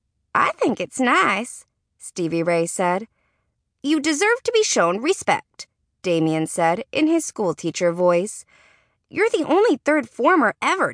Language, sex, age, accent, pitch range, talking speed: English, female, 20-39, American, 165-250 Hz, 135 wpm